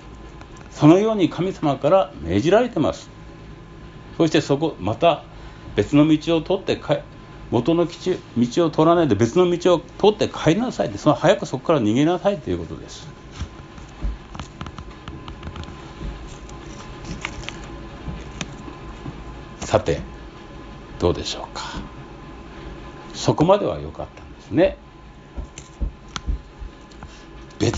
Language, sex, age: Japanese, male, 60-79